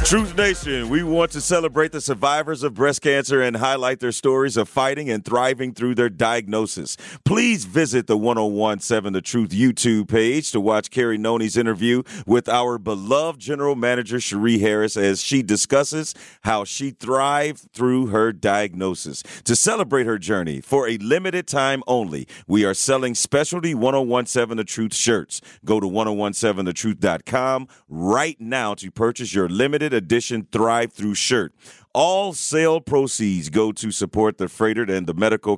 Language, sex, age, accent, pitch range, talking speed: English, male, 40-59, American, 110-135 Hz, 155 wpm